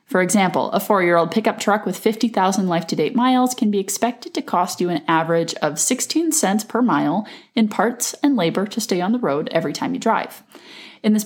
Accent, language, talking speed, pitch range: American, English, 195 wpm, 175-240 Hz